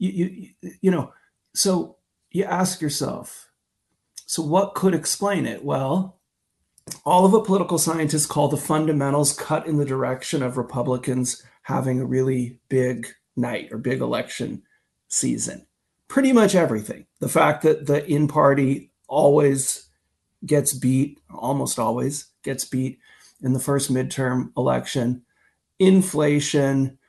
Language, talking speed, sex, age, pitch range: English, 130 wpm, male, 40-59, 130-155 Hz